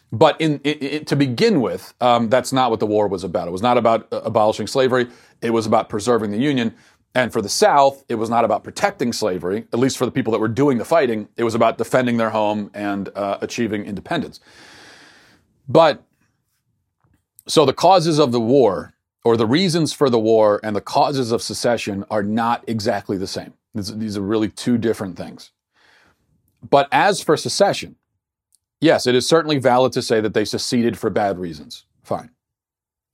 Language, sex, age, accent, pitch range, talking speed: English, male, 40-59, American, 110-140 Hz, 185 wpm